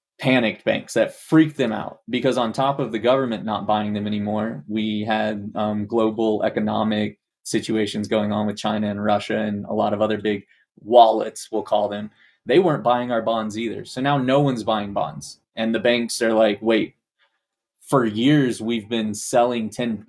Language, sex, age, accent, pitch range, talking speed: English, male, 20-39, American, 105-130 Hz, 185 wpm